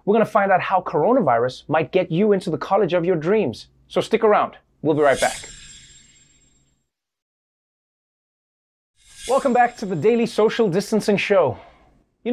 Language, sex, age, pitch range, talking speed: English, male, 30-49, 150-215 Hz, 150 wpm